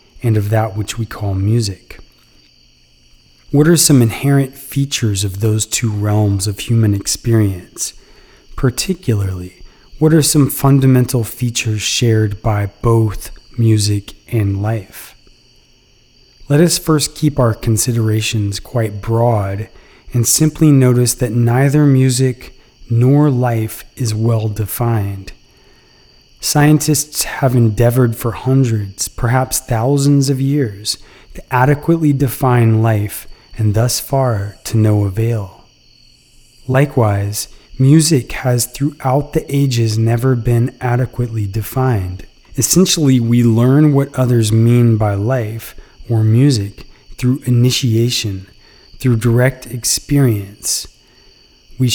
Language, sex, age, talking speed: English, male, 30-49, 110 wpm